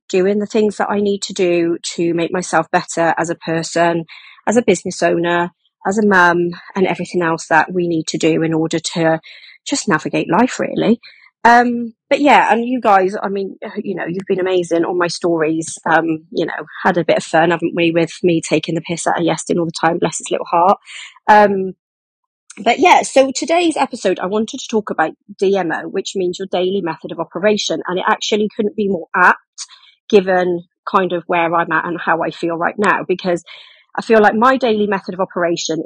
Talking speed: 210 wpm